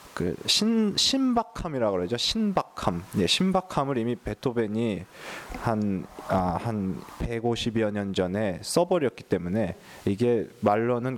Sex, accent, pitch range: male, native, 95-120 Hz